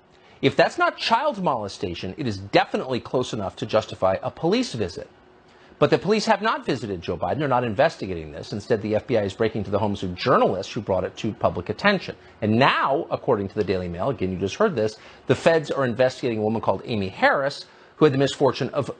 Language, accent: English, American